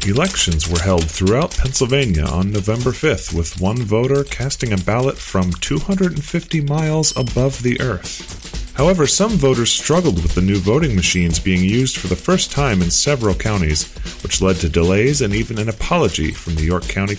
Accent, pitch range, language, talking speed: American, 90-135 Hz, English, 175 wpm